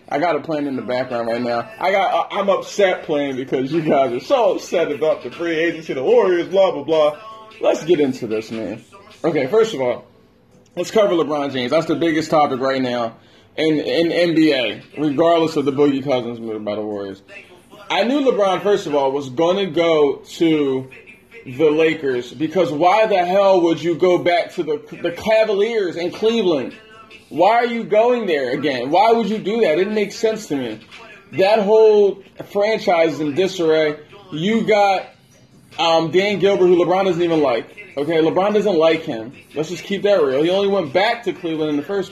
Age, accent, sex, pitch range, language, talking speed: 20-39, American, male, 145-200 Hz, English, 200 wpm